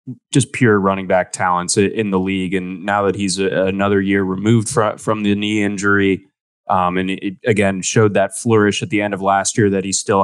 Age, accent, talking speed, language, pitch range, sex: 20-39, American, 205 wpm, English, 95-110 Hz, male